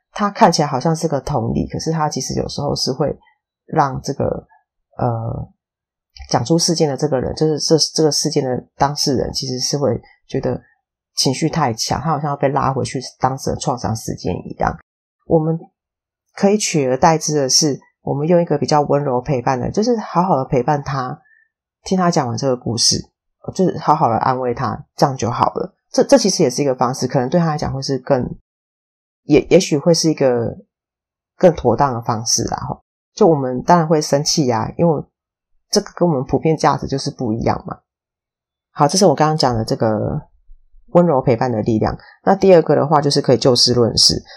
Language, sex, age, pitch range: Chinese, female, 30-49, 130-170 Hz